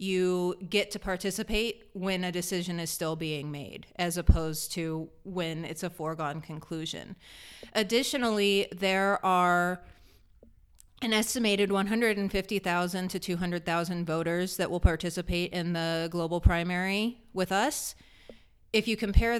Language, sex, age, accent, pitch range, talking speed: English, female, 30-49, American, 175-210 Hz, 125 wpm